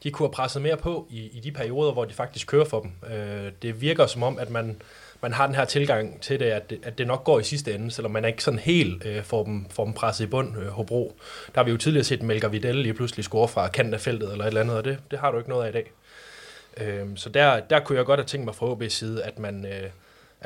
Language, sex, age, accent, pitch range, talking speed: Danish, male, 20-39, native, 110-135 Hz, 285 wpm